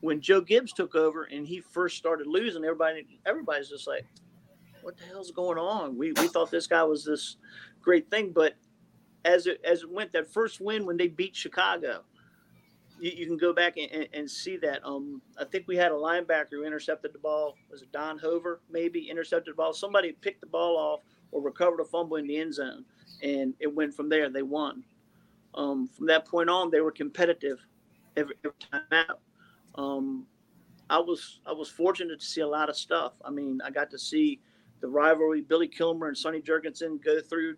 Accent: American